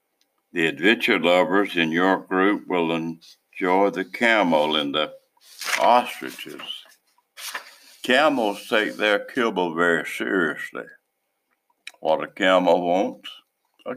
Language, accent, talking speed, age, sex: English, American, 105 wpm, 60-79, male